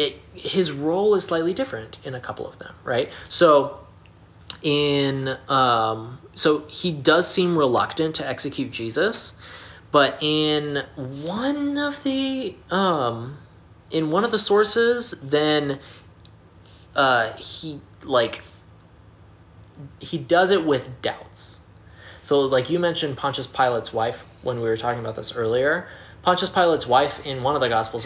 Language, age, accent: English, 20-39, American